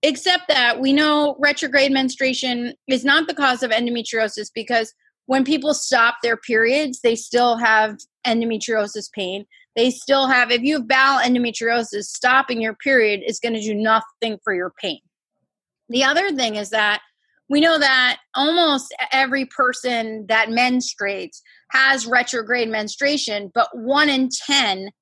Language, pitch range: English, 225-280 Hz